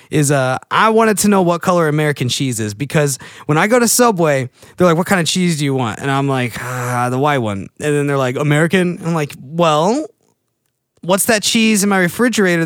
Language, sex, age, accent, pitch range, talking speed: English, male, 30-49, American, 130-180 Hz, 225 wpm